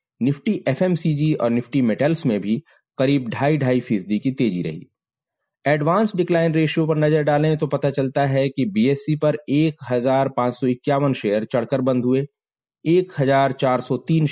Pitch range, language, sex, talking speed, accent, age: 115-145 Hz, Hindi, male, 140 wpm, native, 30-49